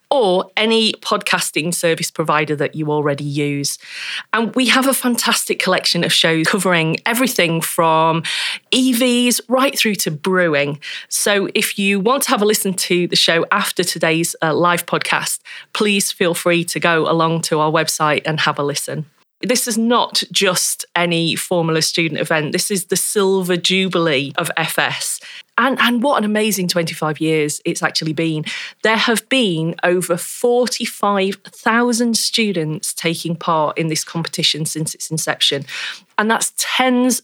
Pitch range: 165-215 Hz